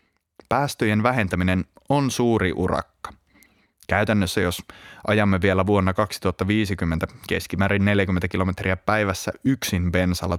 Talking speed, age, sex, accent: 100 wpm, 20-39, male, native